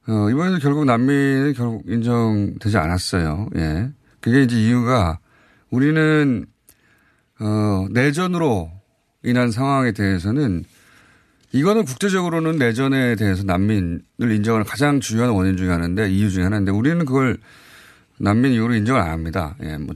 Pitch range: 100-140 Hz